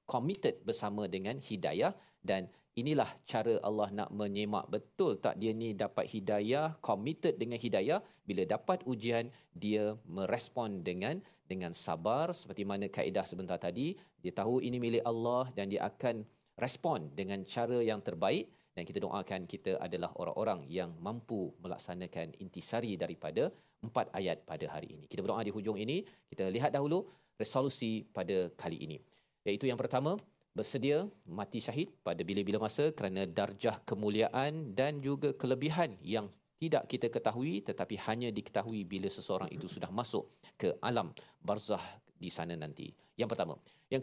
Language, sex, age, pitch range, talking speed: Malayalam, male, 40-59, 100-130 Hz, 150 wpm